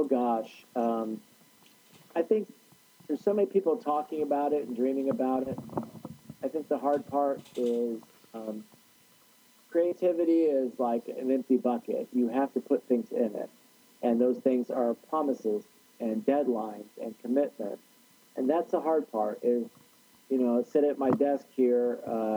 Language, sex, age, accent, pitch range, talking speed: English, male, 40-59, American, 115-140 Hz, 155 wpm